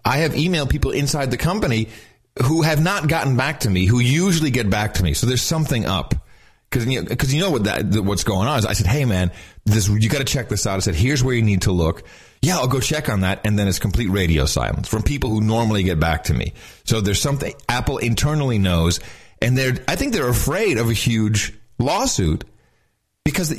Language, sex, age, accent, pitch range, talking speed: English, male, 40-59, American, 100-135 Hz, 235 wpm